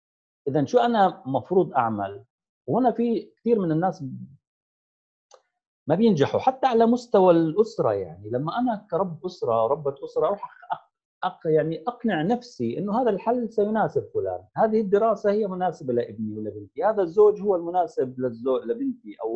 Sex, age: male, 40-59